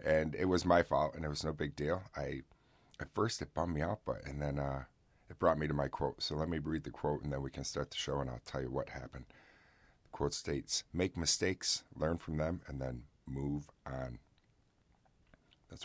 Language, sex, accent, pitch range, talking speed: English, male, American, 70-80 Hz, 225 wpm